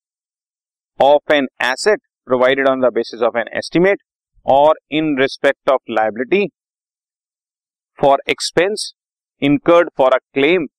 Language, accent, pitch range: Hindi, native, 130-185 Hz